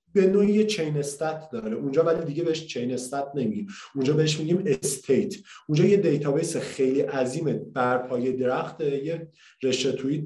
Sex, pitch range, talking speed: male, 135-170 Hz, 160 wpm